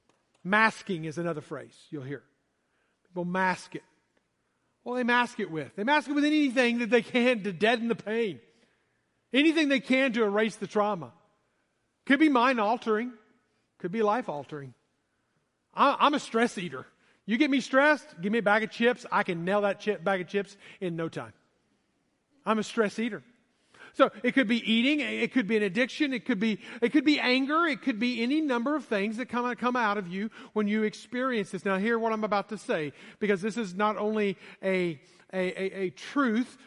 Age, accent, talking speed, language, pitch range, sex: 50-69, American, 195 wpm, English, 185-245 Hz, male